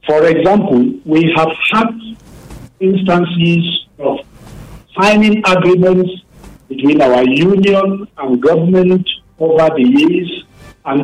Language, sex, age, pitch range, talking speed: English, male, 50-69, 135-185 Hz, 100 wpm